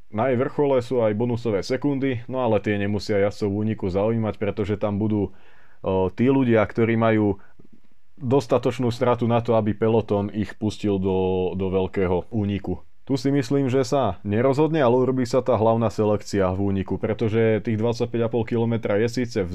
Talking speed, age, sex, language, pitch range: 165 wpm, 20-39, male, Slovak, 100-115 Hz